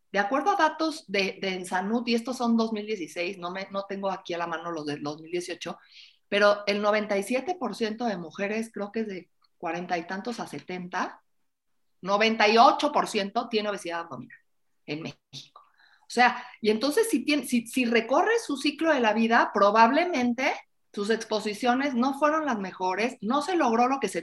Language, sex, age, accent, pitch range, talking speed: Spanish, female, 50-69, Mexican, 190-250 Hz, 170 wpm